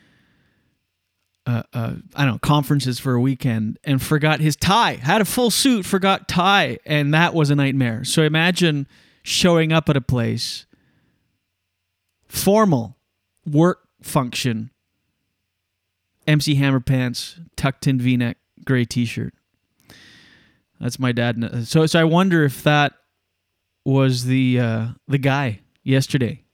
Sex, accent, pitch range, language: male, American, 115-165 Hz, English